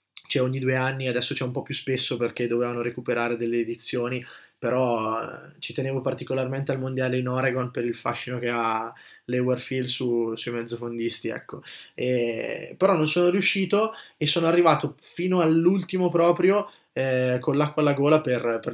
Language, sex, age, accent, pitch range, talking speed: Italian, male, 20-39, native, 125-155 Hz, 165 wpm